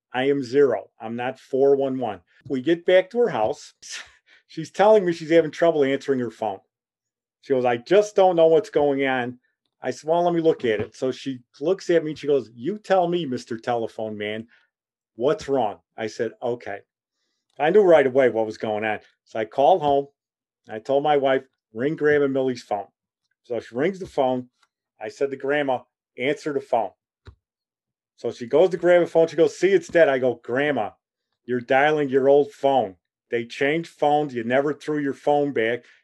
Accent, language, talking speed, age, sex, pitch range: American, English, 200 wpm, 40-59, male, 130-175 Hz